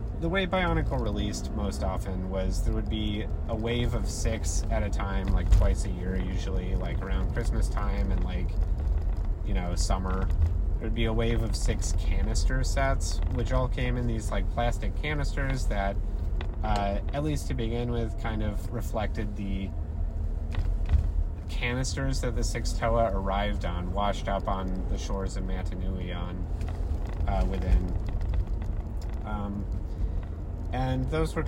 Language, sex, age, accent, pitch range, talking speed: English, male, 30-49, American, 85-105 Hz, 155 wpm